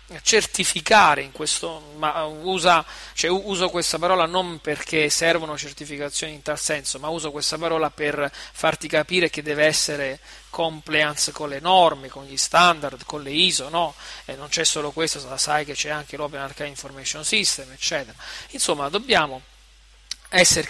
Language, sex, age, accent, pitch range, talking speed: Italian, male, 40-59, native, 145-180 Hz, 155 wpm